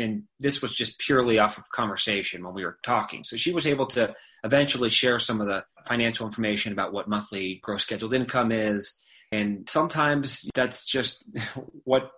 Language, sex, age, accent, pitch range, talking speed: English, male, 30-49, American, 110-130 Hz, 175 wpm